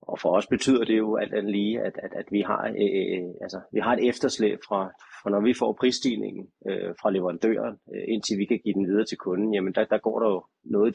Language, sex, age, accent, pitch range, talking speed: Danish, male, 30-49, native, 95-110 Hz, 245 wpm